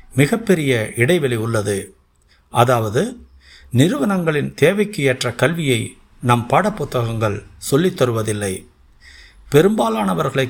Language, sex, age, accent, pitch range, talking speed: Tamil, male, 60-79, native, 110-150 Hz, 70 wpm